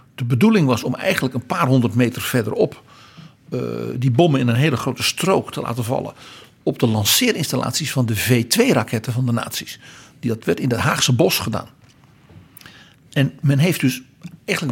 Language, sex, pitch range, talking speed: Dutch, male, 120-145 Hz, 170 wpm